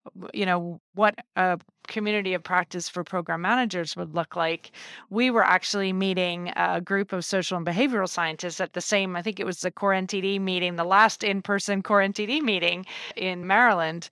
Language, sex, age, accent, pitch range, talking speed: English, female, 30-49, American, 175-210 Hz, 185 wpm